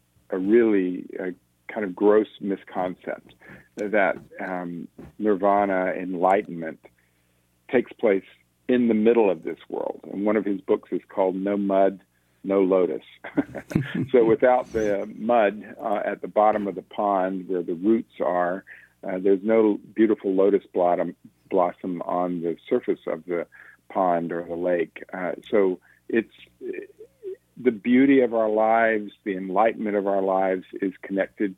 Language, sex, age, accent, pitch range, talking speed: English, male, 50-69, American, 90-105 Hz, 140 wpm